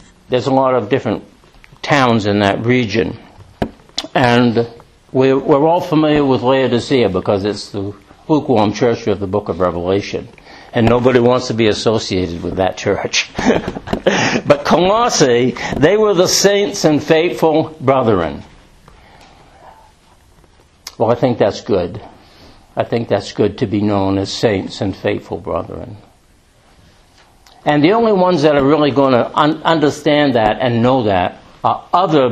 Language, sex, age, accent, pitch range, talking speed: English, male, 60-79, American, 100-140 Hz, 140 wpm